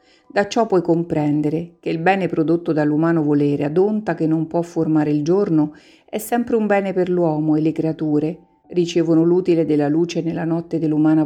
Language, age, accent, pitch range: Italian, 50-69, native, 155-180 Hz